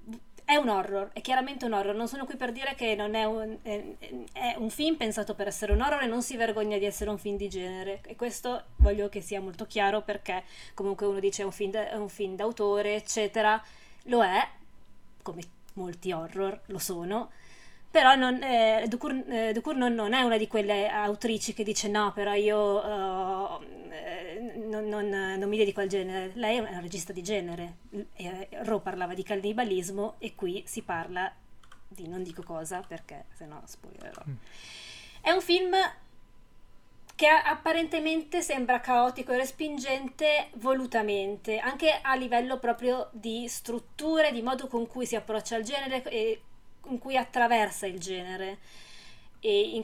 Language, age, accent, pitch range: Italian, 20-39, native, 195-255 Hz